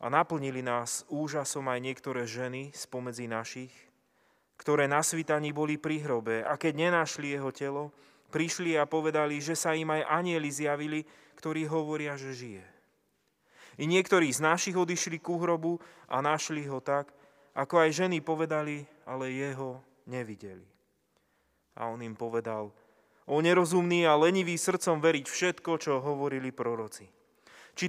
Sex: male